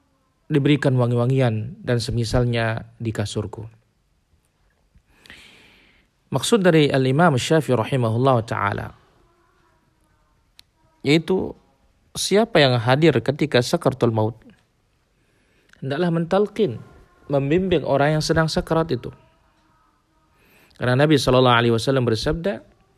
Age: 40-59